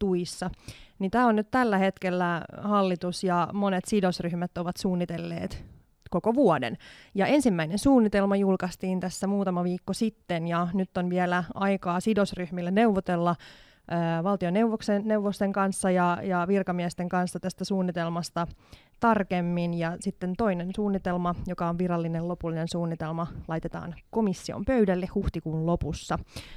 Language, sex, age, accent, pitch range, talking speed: Finnish, female, 20-39, native, 175-200 Hz, 115 wpm